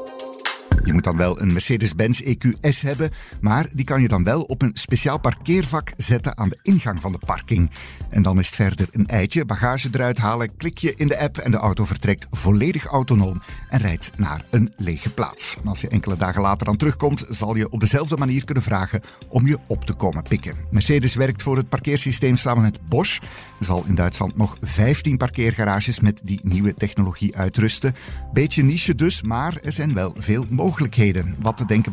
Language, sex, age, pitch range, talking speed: Dutch, male, 50-69, 100-135 Hz, 195 wpm